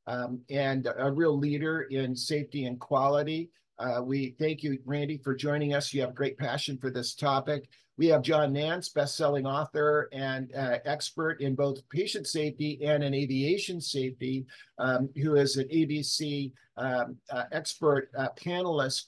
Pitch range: 135-155 Hz